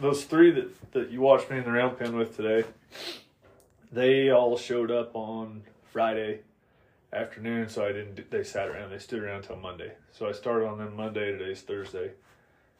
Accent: American